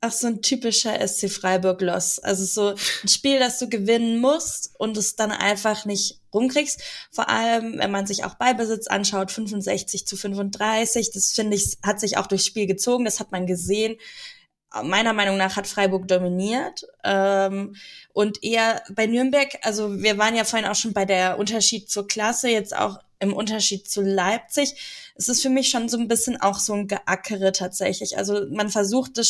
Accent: German